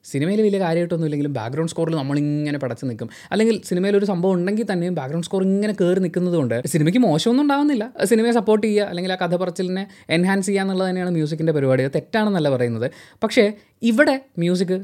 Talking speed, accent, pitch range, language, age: 165 wpm, native, 135-200 Hz, Malayalam, 20-39